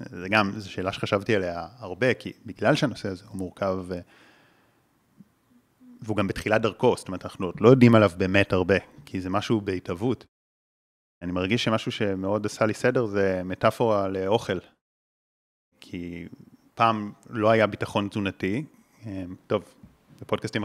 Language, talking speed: Hebrew, 140 wpm